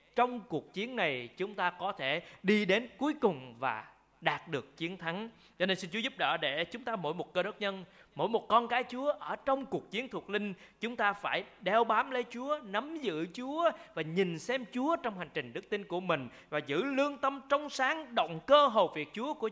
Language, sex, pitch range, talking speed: Vietnamese, male, 165-240 Hz, 230 wpm